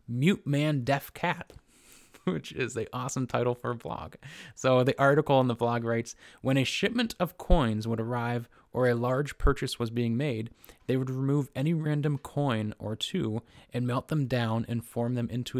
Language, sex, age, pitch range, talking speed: English, male, 20-39, 115-135 Hz, 190 wpm